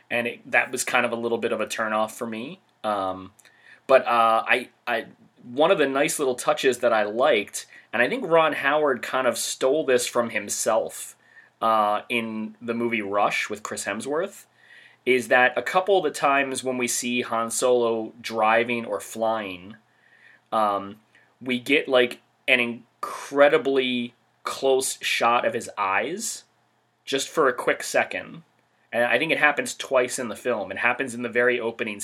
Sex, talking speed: male, 175 wpm